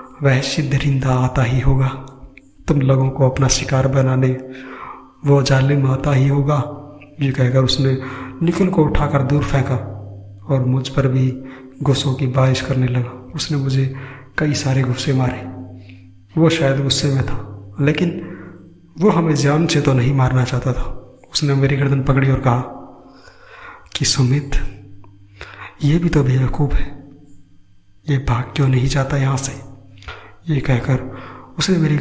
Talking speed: 145 wpm